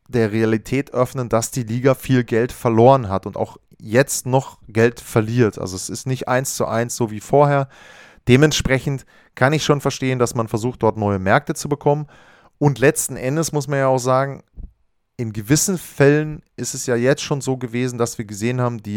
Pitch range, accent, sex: 110-140 Hz, German, male